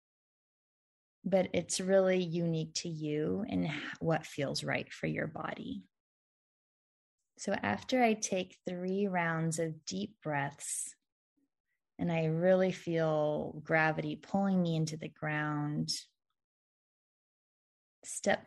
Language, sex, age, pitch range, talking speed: English, female, 20-39, 155-190 Hz, 105 wpm